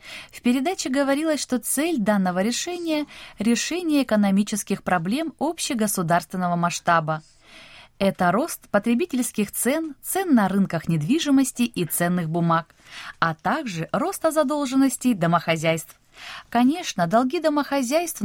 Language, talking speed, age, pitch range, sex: Russian, 100 wpm, 20-39, 170-275 Hz, female